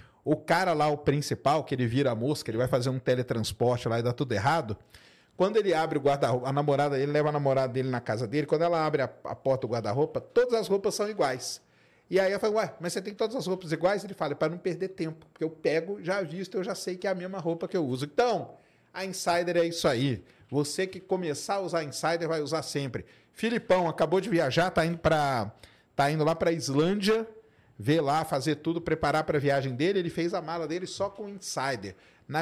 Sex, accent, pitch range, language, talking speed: male, Brazilian, 140-180 Hz, Portuguese, 235 wpm